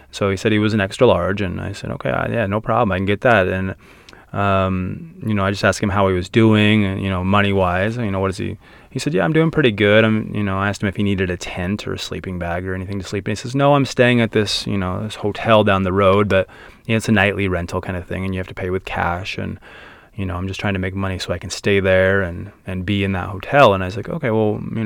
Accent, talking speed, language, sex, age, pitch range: American, 300 wpm, English, male, 20-39, 95-110 Hz